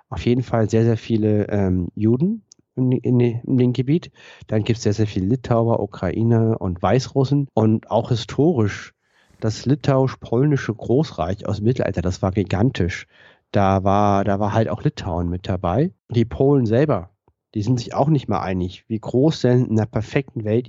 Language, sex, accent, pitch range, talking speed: German, male, German, 105-130 Hz, 175 wpm